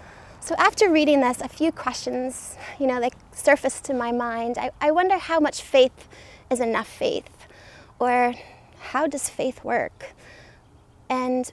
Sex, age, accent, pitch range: female, 30-49, American, 235-280 Hz